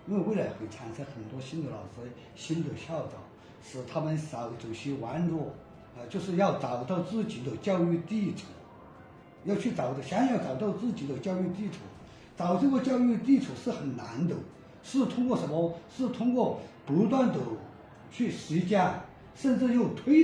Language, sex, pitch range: Chinese, male, 140-210 Hz